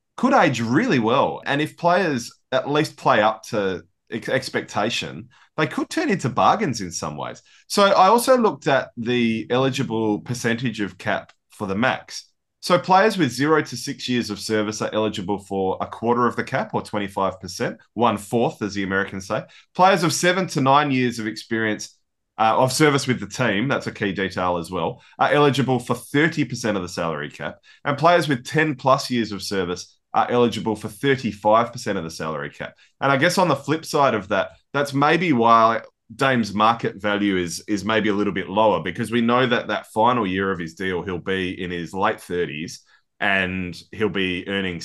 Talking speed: 195 wpm